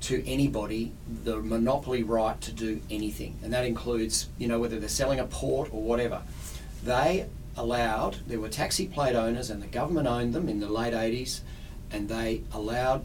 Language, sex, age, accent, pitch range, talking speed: English, male, 40-59, Australian, 110-125 Hz, 180 wpm